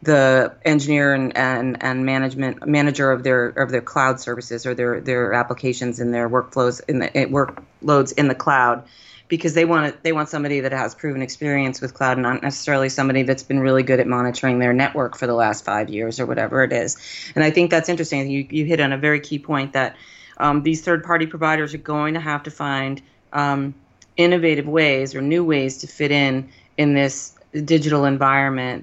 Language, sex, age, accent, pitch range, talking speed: English, female, 30-49, American, 130-150 Hz, 205 wpm